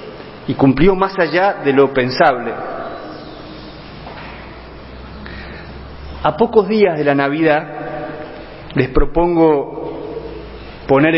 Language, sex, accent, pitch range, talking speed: Spanish, male, Argentinian, 135-175 Hz, 85 wpm